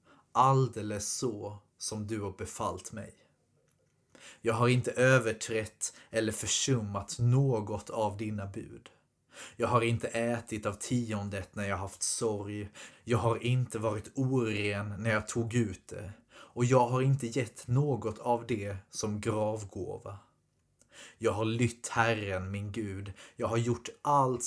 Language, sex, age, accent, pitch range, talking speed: Swedish, male, 30-49, native, 100-120 Hz, 140 wpm